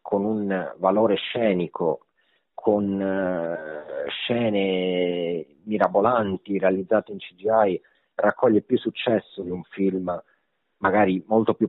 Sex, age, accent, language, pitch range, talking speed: male, 40-59, native, Italian, 90-105 Hz, 100 wpm